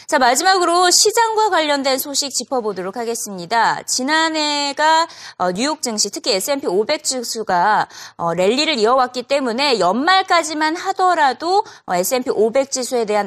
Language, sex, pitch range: Korean, female, 225-345 Hz